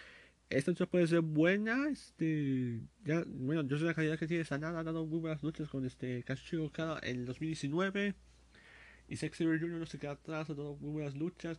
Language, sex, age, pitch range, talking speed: Spanish, male, 30-49, 130-160 Hz, 210 wpm